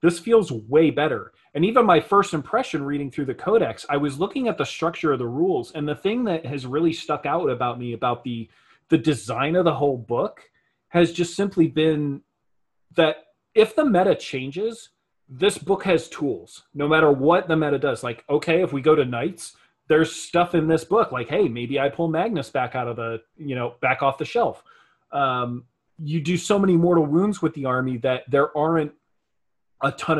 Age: 30-49